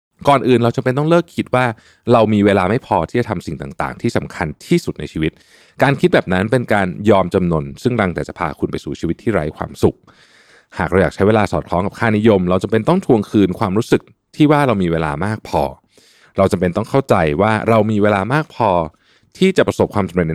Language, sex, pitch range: Thai, male, 90-130 Hz